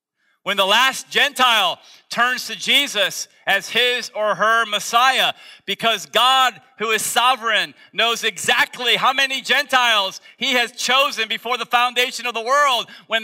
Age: 40-59